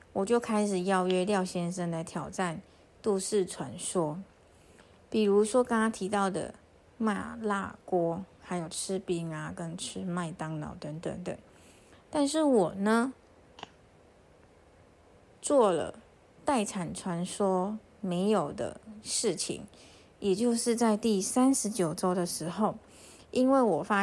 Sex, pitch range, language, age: female, 185-225 Hz, Chinese, 30-49